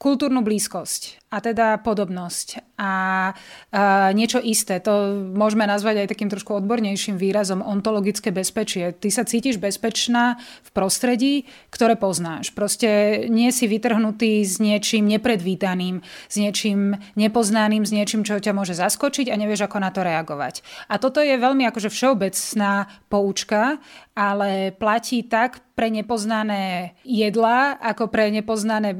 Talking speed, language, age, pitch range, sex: 135 wpm, Slovak, 20-39, 195-230 Hz, female